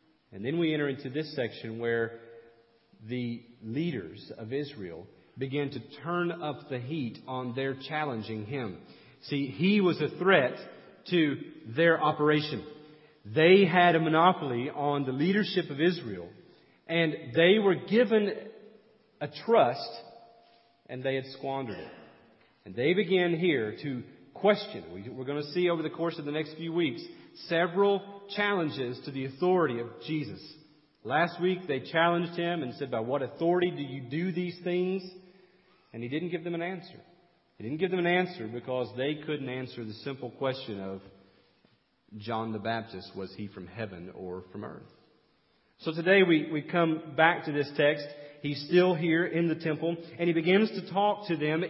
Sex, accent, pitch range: male, American, 130-180 Hz